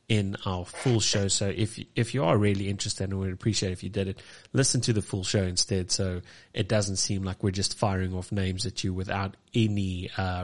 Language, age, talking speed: English, 30-49, 230 wpm